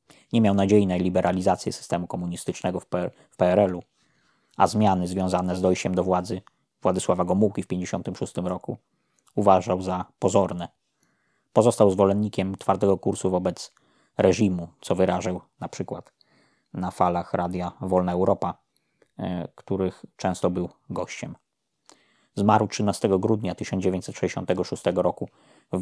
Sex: male